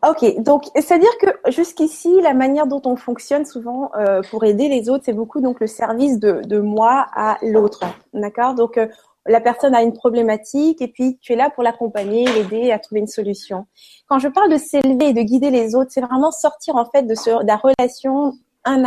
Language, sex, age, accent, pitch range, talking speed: French, female, 20-39, French, 235-300 Hz, 215 wpm